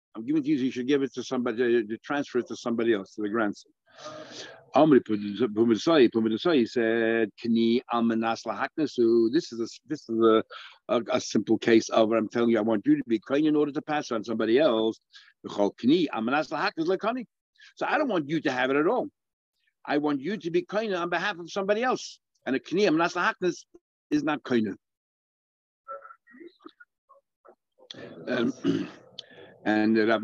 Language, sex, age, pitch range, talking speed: English, male, 60-79, 110-150 Hz, 165 wpm